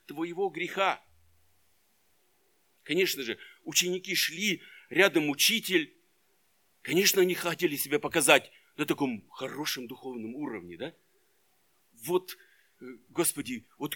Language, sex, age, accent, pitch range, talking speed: Russian, male, 50-69, native, 145-215 Hz, 95 wpm